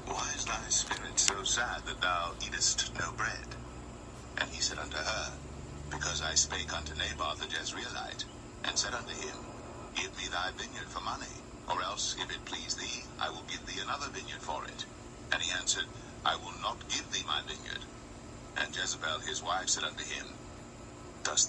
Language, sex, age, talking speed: English, male, 60-79, 180 wpm